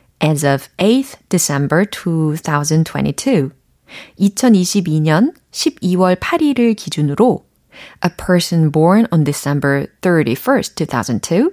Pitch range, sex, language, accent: 150-215 Hz, female, Korean, native